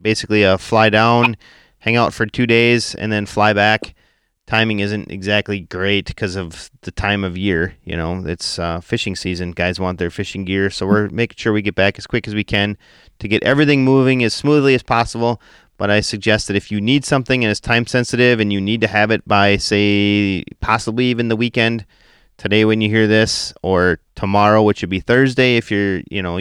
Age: 30-49